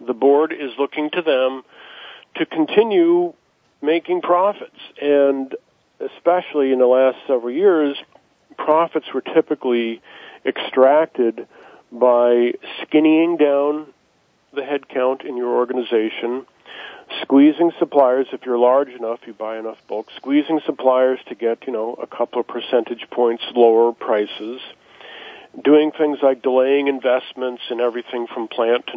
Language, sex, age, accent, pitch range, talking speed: English, male, 40-59, American, 120-145 Hz, 130 wpm